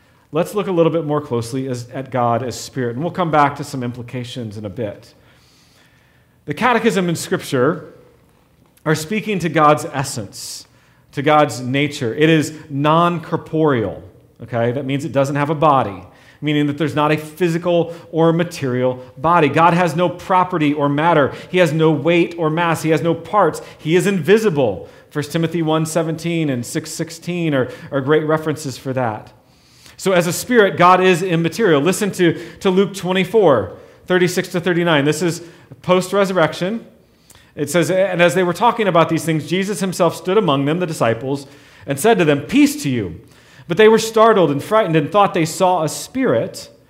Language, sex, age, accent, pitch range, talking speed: English, male, 40-59, American, 140-180 Hz, 180 wpm